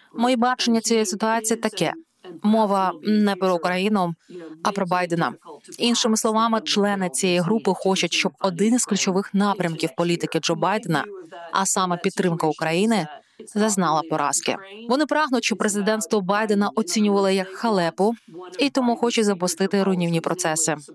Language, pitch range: Ukrainian, 175-225 Hz